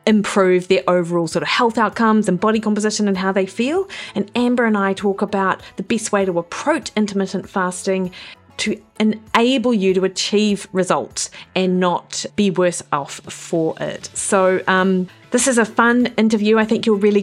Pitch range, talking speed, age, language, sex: 185-220 Hz, 180 wpm, 30-49, English, female